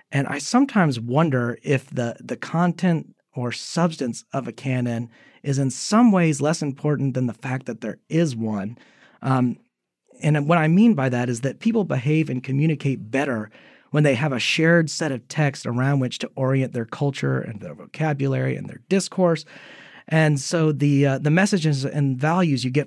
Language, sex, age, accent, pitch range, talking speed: English, male, 30-49, American, 125-160 Hz, 185 wpm